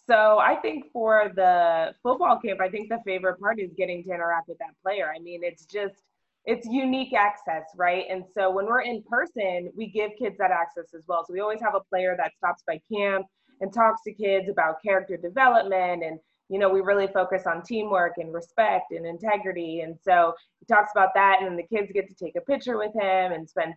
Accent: American